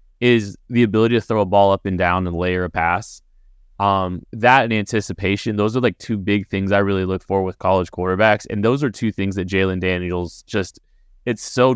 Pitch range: 95-110 Hz